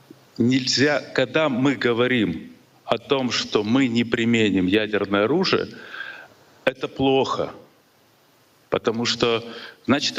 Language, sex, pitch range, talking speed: Russian, male, 110-145 Hz, 100 wpm